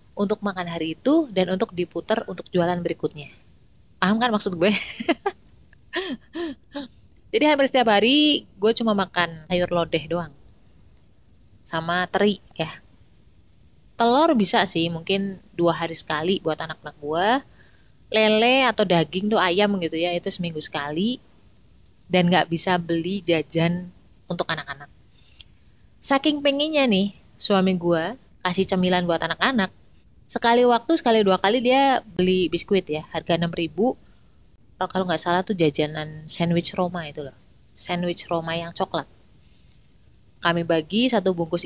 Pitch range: 165-220 Hz